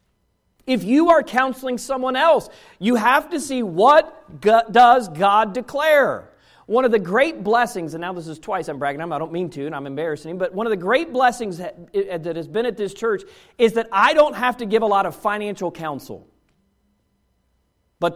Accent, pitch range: American, 165-230 Hz